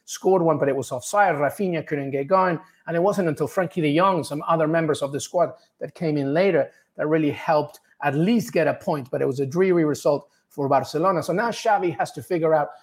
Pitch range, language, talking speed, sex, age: 150-185 Hz, English, 235 wpm, male, 30-49